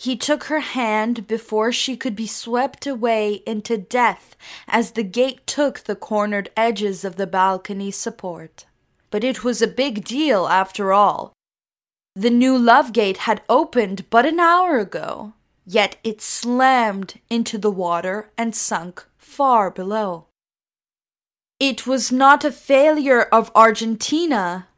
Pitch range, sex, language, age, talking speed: 210-255 Hz, female, English, 10-29, 140 wpm